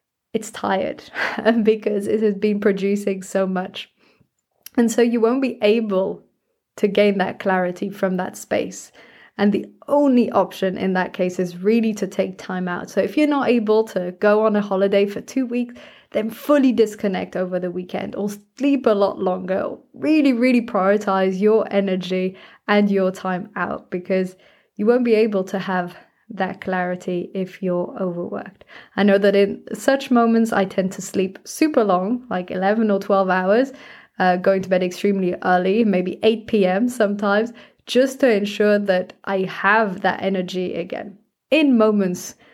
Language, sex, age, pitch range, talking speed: English, female, 20-39, 185-225 Hz, 165 wpm